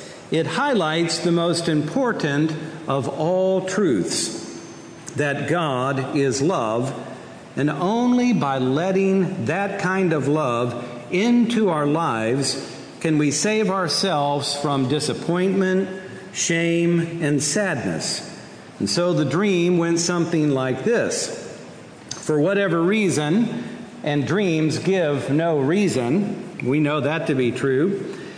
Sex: male